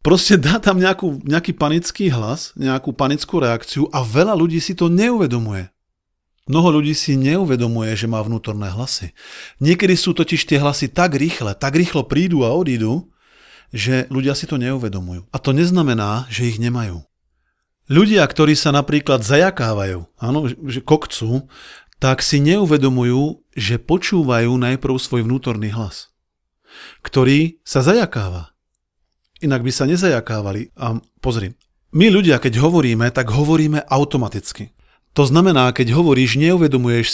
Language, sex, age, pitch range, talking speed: Slovak, male, 40-59, 115-155 Hz, 135 wpm